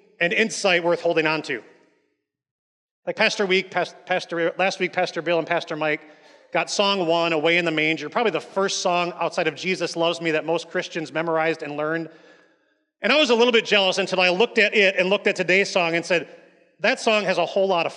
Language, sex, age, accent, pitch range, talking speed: English, male, 30-49, American, 155-205 Hz, 215 wpm